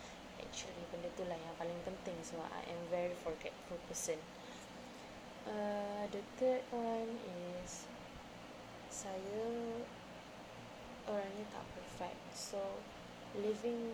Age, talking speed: 20-39, 100 wpm